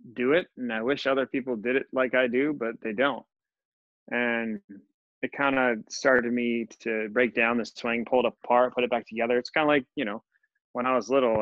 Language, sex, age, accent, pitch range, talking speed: English, male, 20-39, American, 110-135 Hz, 225 wpm